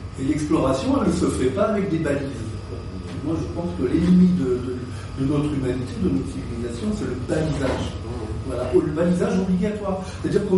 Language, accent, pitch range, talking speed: French, French, 120-185 Hz, 195 wpm